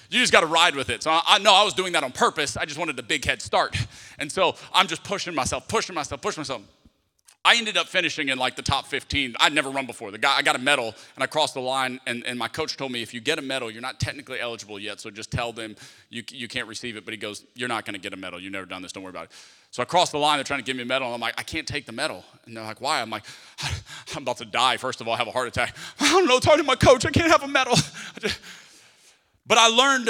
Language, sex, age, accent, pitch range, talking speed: English, male, 30-49, American, 130-220 Hz, 305 wpm